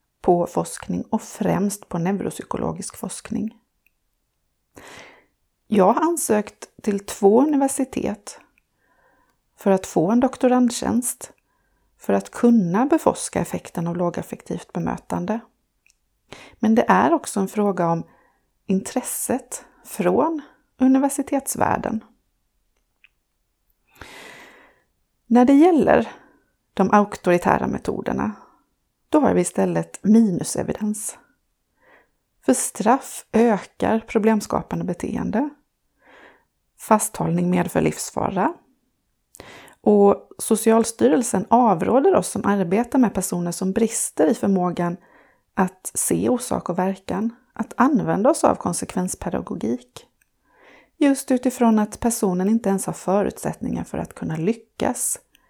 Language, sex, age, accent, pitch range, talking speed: Swedish, female, 30-49, native, 190-250 Hz, 95 wpm